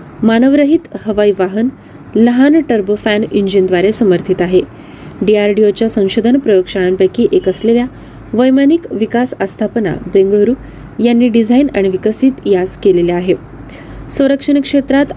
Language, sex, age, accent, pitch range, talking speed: Marathi, female, 20-39, native, 190-240 Hz, 105 wpm